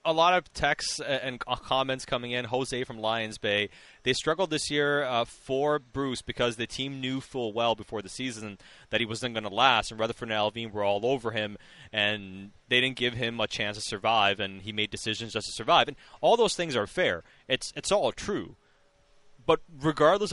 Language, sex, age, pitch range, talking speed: English, male, 20-39, 110-145 Hz, 205 wpm